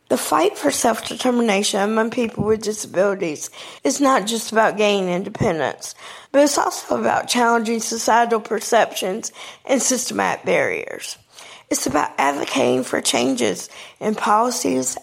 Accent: American